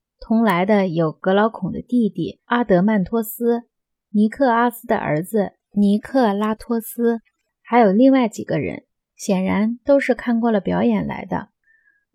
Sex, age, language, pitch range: female, 20-39, Chinese, 195-245 Hz